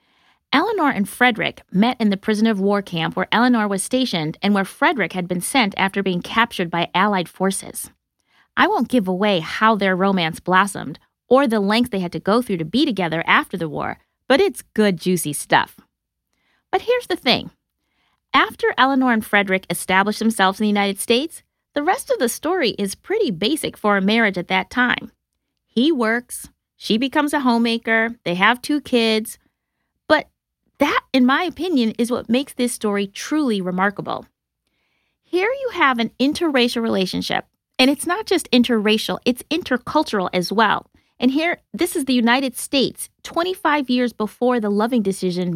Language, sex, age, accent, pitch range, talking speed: English, female, 30-49, American, 195-275 Hz, 170 wpm